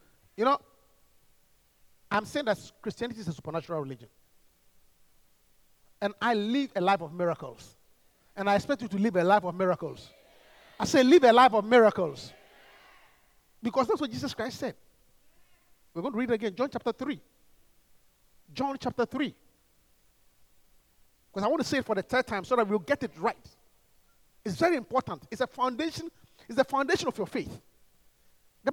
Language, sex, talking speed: English, male, 170 wpm